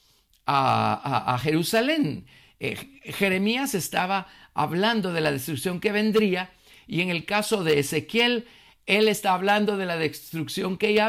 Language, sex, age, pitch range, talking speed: Spanish, male, 50-69, 145-195 Hz, 145 wpm